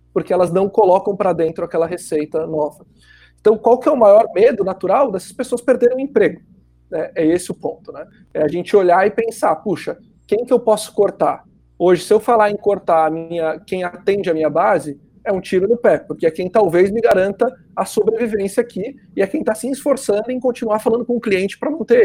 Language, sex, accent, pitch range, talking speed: Portuguese, male, Brazilian, 160-220 Hz, 220 wpm